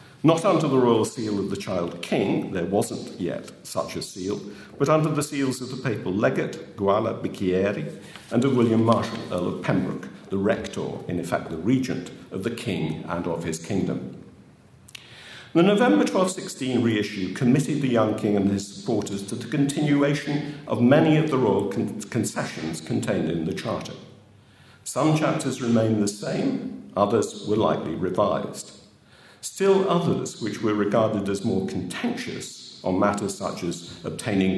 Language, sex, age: English, male, 50-69